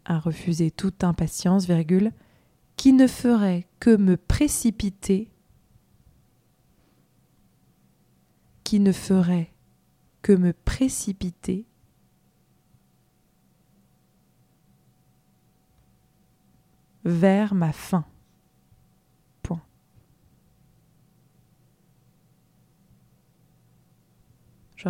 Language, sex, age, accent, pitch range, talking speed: French, female, 20-39, French, 165-215 Hz, 55 wpm